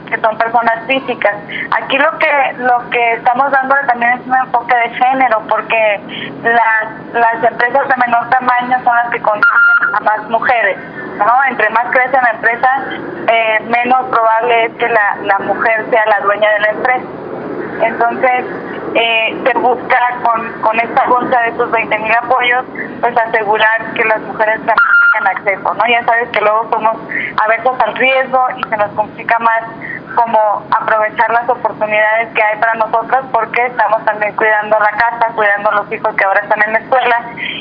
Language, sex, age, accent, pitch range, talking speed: Spanish, female, 20-39, Mexican, 220-255 Hz, 175 wpm